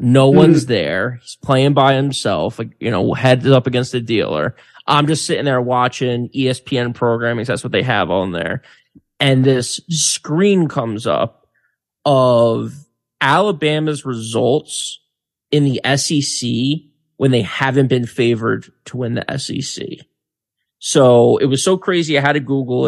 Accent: American